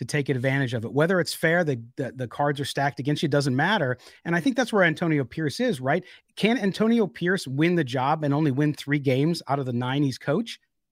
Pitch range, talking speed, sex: 140-185 Hz, 230 wpm, male